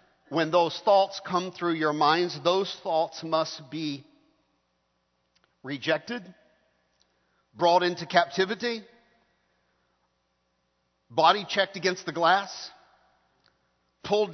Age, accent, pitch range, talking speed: 50-69, American, 140-195 Hz, 90 wpm